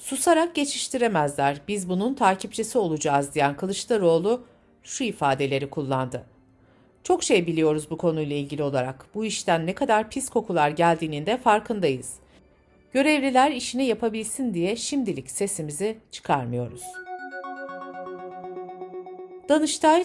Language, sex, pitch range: Turkish, female, 150-240 Hz